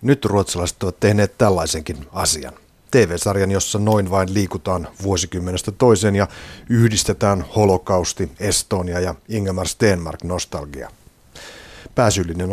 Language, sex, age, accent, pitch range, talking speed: Finnish, male, 60-79, native, 90-105 Hz, 105 wpm